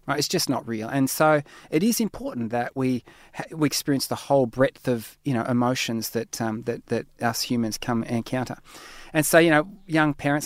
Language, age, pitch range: English, 30-49, 125-160 Hz